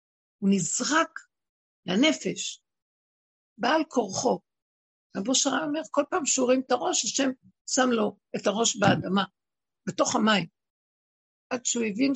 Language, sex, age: Hebrew, female, 60-79